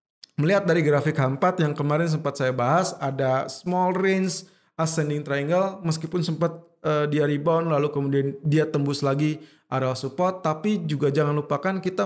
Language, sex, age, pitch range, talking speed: Indonesian, male, 20-39, 140-175 Hz, 155 wpm